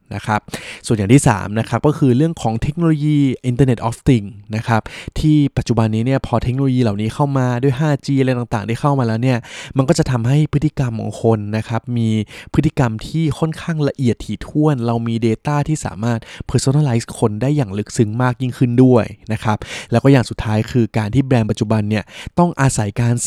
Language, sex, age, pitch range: Thai, male, 20-39, 110-135 Hz